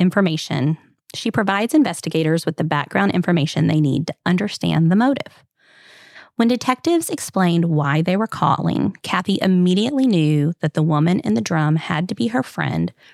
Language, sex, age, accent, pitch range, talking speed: English, female, 20-39, American, 155-195 Hz, 160 wpm